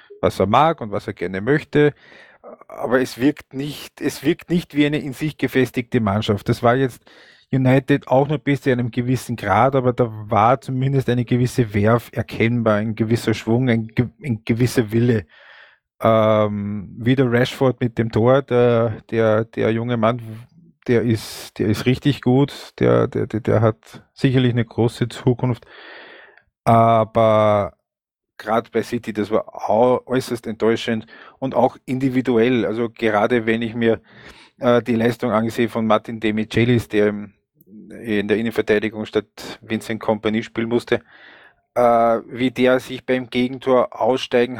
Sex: male